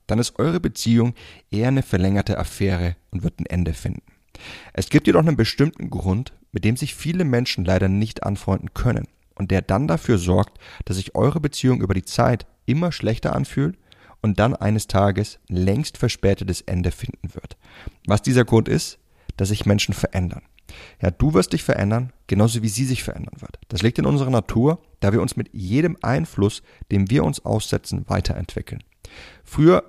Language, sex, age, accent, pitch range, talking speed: German, male, 30-49, German, 95-125 Hz, 175 wpm